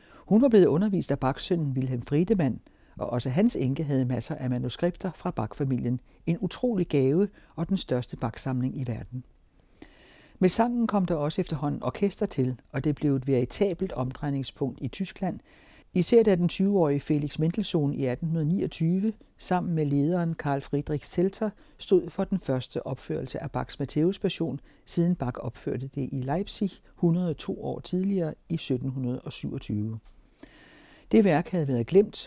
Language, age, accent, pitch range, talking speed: Danish, 60-79, native, 135-180 Hz, 155 wpm